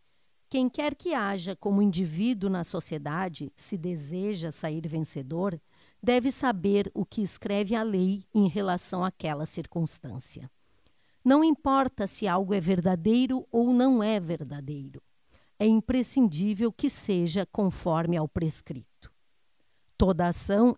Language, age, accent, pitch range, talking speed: Portuguese, 50-69, Brazilian, 175-235 Hz, 120 wpm